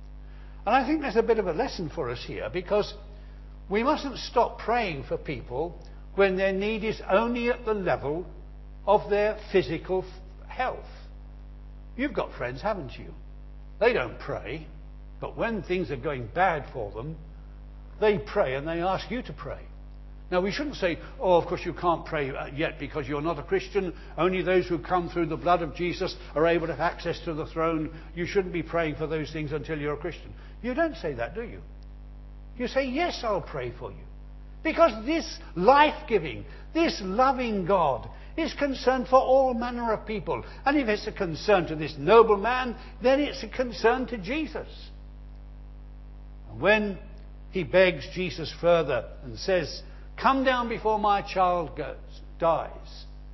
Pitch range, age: 130-215 Hz, 60-79